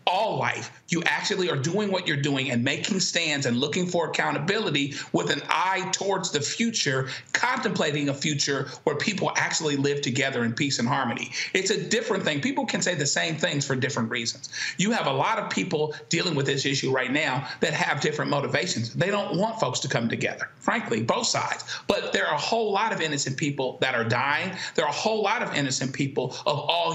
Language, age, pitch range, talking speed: English, 40-59, 135-185 Hz, 210 wpm